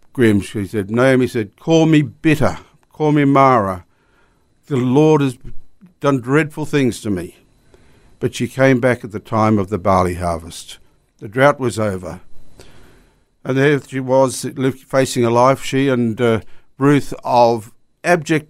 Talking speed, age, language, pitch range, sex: 150 wpm, 60-79, English, 105-135 Hz, male